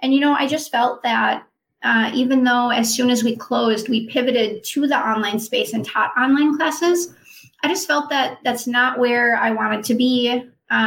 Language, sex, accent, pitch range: English, female, American, 225-265 Hz